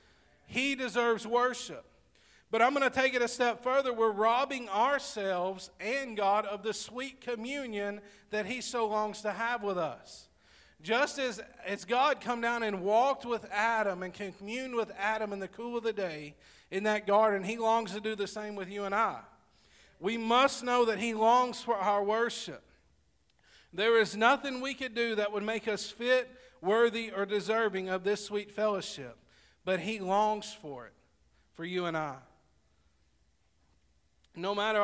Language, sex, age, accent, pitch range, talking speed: English, male, 40-59, American, 170-225 Hz, 170 wpm